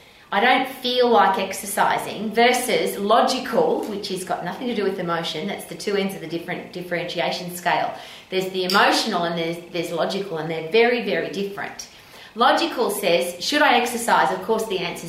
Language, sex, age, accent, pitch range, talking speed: English, female, 30-49, Australian, 175-230 Hz, 180 wpm